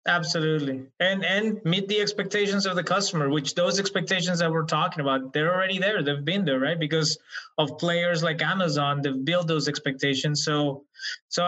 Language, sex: English, male